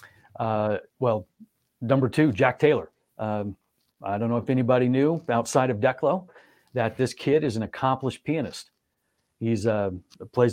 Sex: male